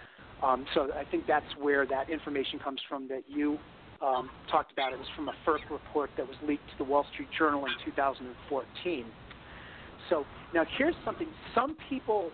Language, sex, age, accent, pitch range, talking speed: English, male, 40-59, American, 140-165 Hz, 180 wpm